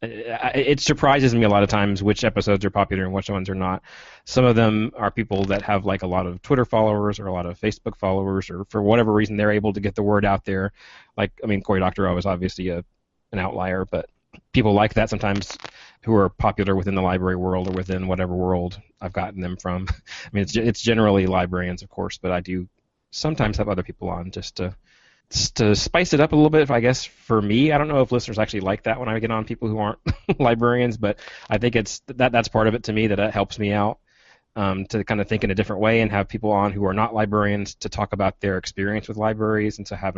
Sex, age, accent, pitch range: male, 30-49, American, 95-110 Hz